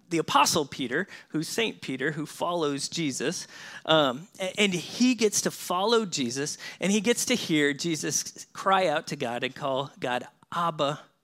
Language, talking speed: English, 160 wpm